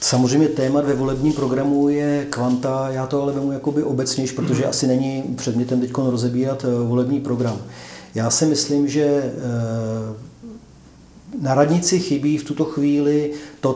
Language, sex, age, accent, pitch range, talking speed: Czech, male, 40-59, native, 125-145 Hz, 140 wpm